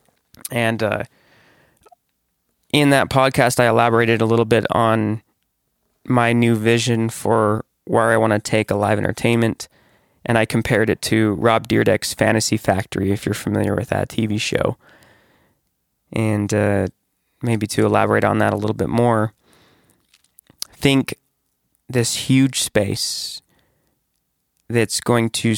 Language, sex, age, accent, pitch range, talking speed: English, male, 20-39, American, 110-120 Hz, 135 wpm